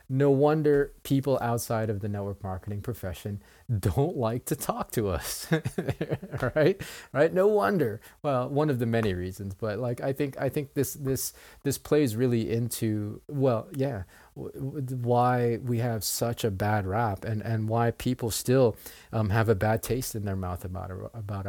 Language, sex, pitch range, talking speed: English, male, 105-130 Hz, 180 wpm